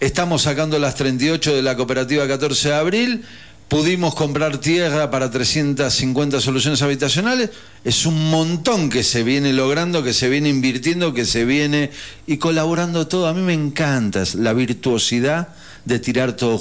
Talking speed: 155 wpm